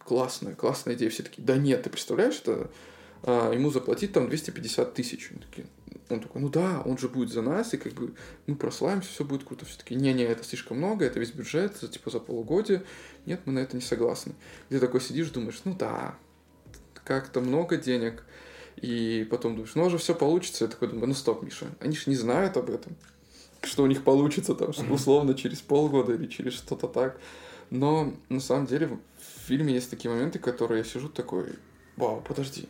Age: 20-39